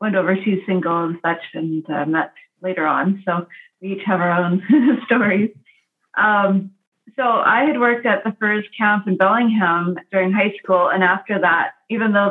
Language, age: English, 30-49